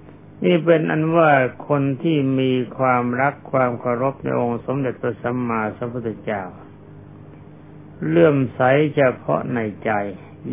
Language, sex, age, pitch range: Thai, male, 60-79, 115-140 Hz